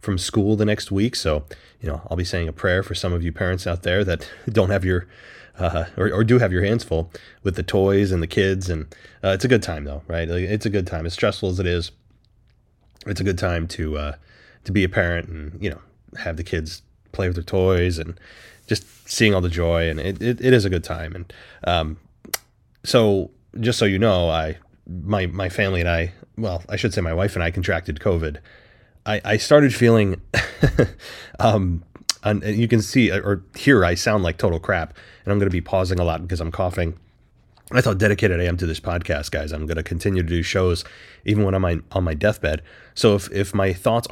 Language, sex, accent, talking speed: English, male, American, 225 wpm